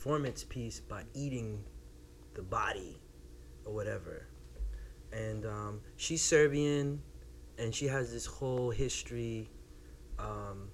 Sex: male